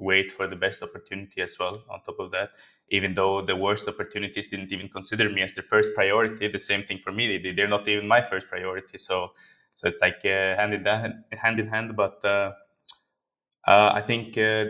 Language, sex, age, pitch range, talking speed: English, male, 20-39, 100-115 Hz, 215 wpm